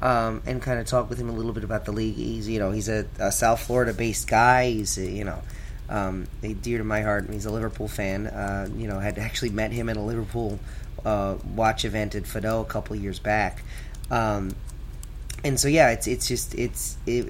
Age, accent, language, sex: 30-49, American, English, male